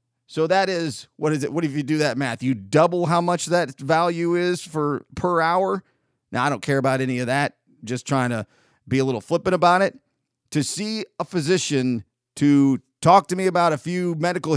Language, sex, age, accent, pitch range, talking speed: English, male, 40-59, American, 130-165 Hz, 210 wpm